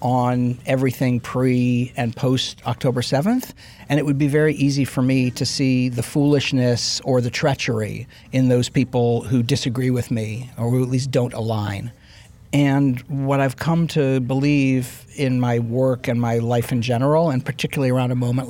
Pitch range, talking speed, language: 125-160 Hz, 175 wpm, English